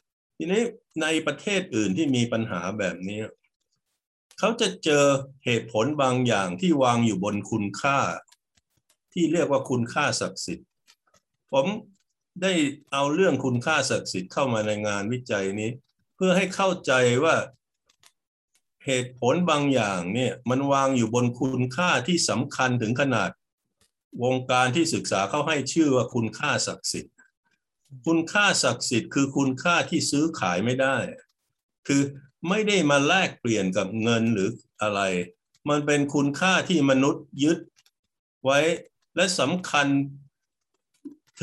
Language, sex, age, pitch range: Thai, male, 60-79, 120-160 Hz